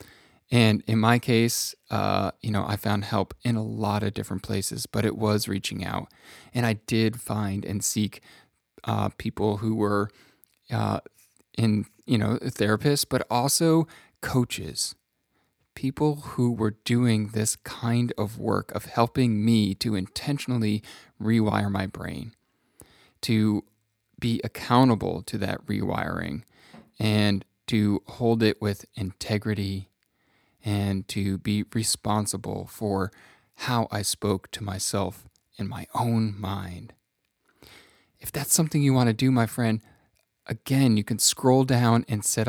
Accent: American